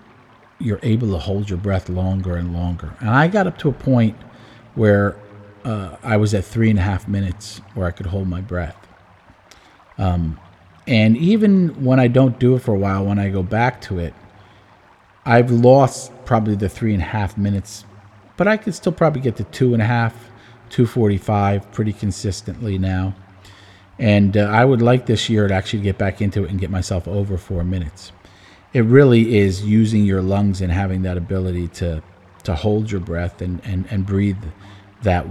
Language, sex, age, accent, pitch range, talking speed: English, male, 40-59, American, 95-110 Hz, 190 wpm